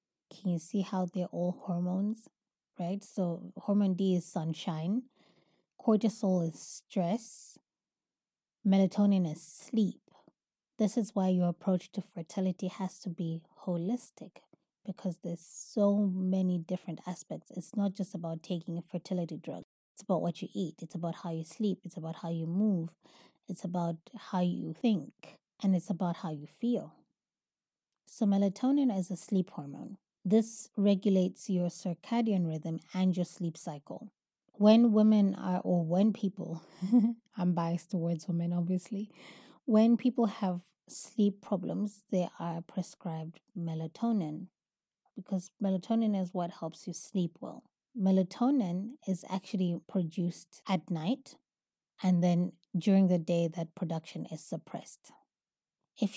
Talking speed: 140 wpm